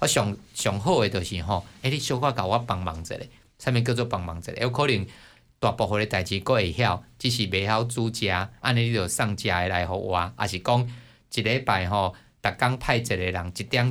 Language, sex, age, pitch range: Chinese, male, 50-69, 100-120 Hz